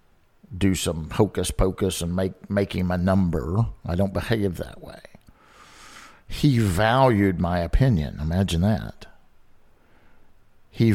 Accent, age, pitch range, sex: American, 50-69, 85-110 Hz, male